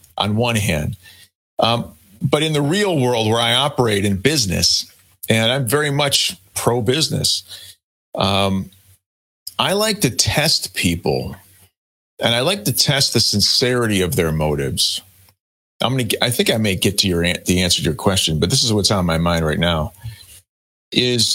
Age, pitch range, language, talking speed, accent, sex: 40-59, 95-130 Hz, English, 170 wpm, American, male